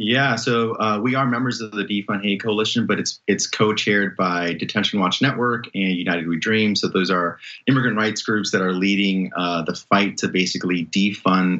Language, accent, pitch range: English, American, 90-105 Hz